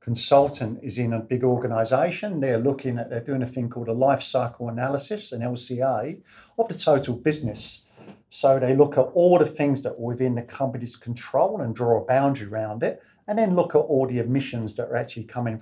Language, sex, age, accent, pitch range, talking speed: English, male, 50-69, British, 120-145 Hz, 210 wpm